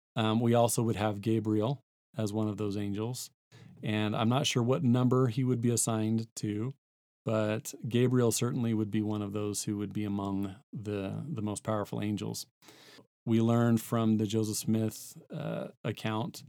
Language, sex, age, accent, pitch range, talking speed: English, male, 40-59, American, 105-130 Hz, 170 wpm